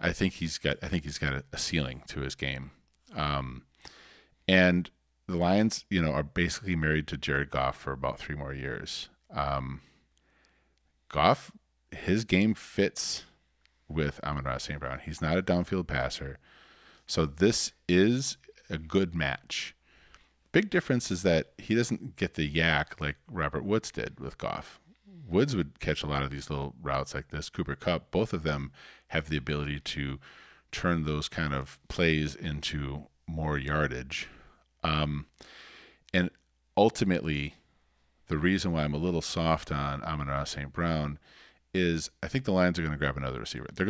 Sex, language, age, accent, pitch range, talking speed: male, English, 40-59, American, 70-85 Hz, 165 wpm